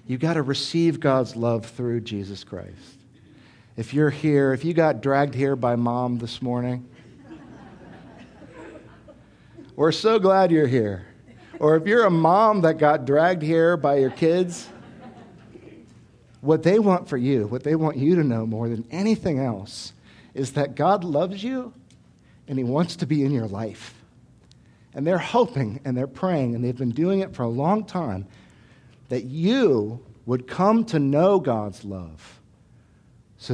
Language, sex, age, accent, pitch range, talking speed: English, male, 50-69, American, 115-160 Hz, 160 wpm